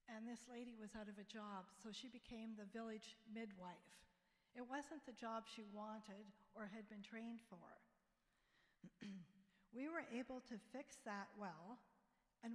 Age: 50-69